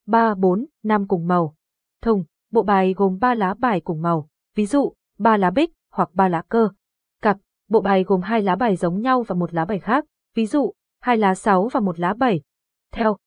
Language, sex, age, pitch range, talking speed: Vietnamese, female, 20-39, 185-235 Hz, 215 wpm